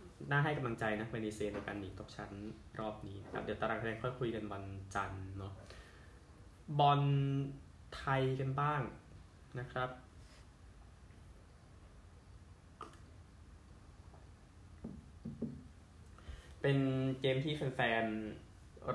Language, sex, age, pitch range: Thai, male, 20-39, 100-125 Hz